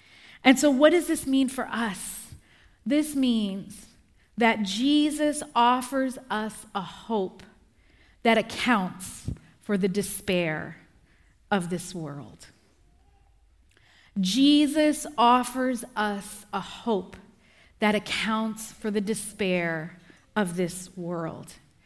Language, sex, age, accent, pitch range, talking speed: English, female, 40-59, American, 190-230 Hz, 100 wpm